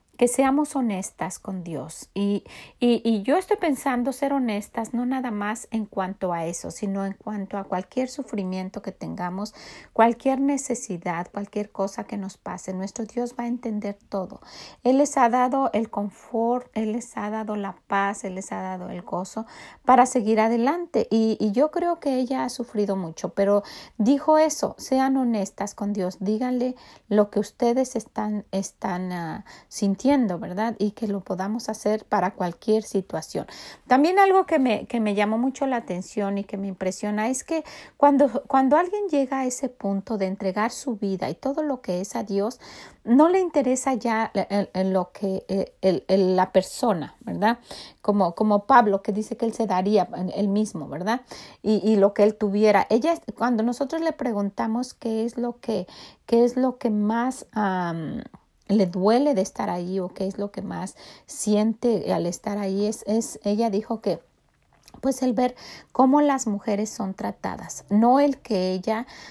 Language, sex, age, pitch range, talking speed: Spanish, female, 40-59, 200-250 Hz, 180 wpm